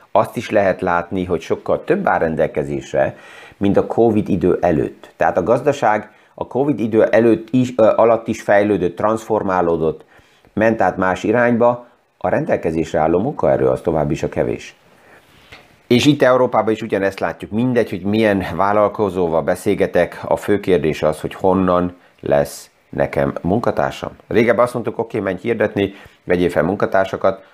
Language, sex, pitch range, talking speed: Hungarian, male, 85-105 Hz, 150 wpm